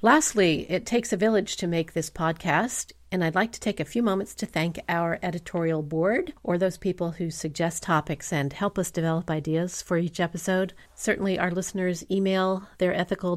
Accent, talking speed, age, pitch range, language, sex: American, 190 wpm, 50-69, 160-190 Hz, English, female